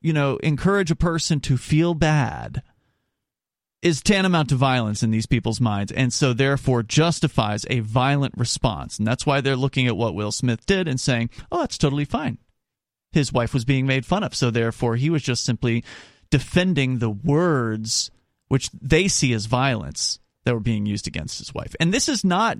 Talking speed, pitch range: 190 wpm, 115-155 Hz